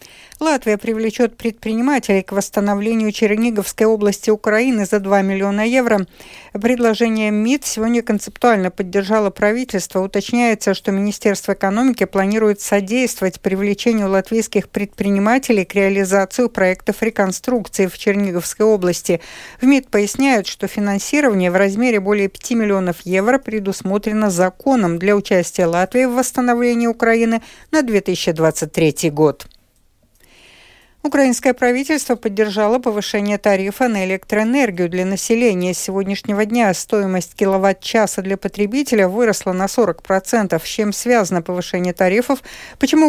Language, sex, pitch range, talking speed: Russian, female, 190-230 Hz, 115 wpm